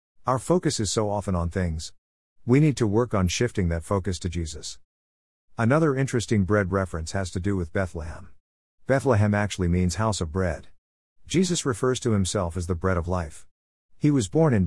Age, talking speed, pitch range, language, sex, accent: 50-69, 185 wpm, 85-120 Hz, English, male, American